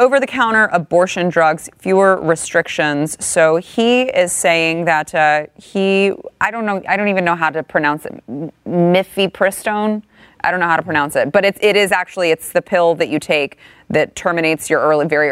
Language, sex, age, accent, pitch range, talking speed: English, female, 20-39, American, 150-195 Hz, 185 wpm